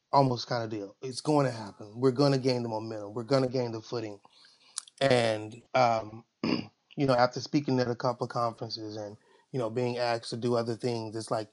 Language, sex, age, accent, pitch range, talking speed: English, male, 30-49, American, 115-130 Hz, 220 wpm